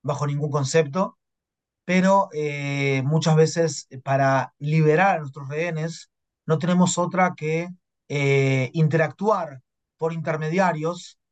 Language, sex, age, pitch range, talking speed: Spanish, male, 30-49, 145-175 Hz, 105 wpm